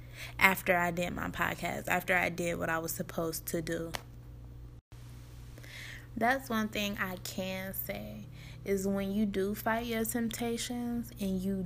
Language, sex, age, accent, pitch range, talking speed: English, female, 20-39, American, 175-210 Hz, 150 wpm